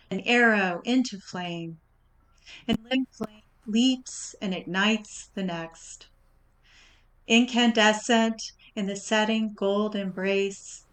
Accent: American